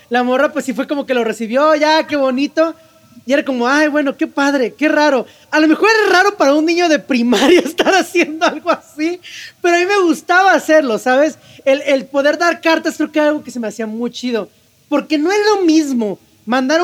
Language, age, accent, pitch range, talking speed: Spanish, 30-49, Mexican, 240-315 Hz, 225 wpm